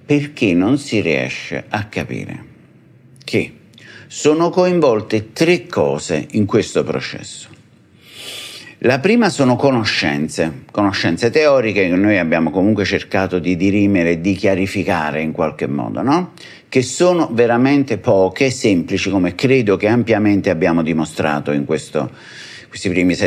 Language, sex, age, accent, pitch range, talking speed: Italian, male, 50-69, native, 95-140 Hz, 130 wpm